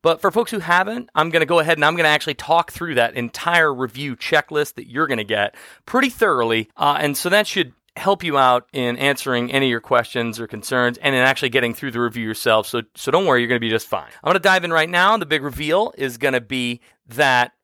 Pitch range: 125-175 Hz